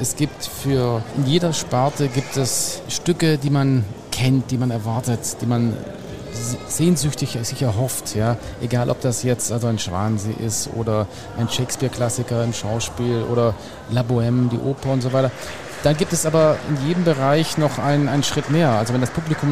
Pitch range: 120-150 Hz